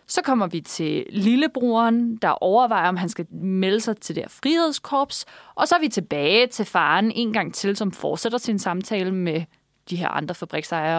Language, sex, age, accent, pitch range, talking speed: Danish, female, 20-39, native, 180-230 Hz, 185 wpm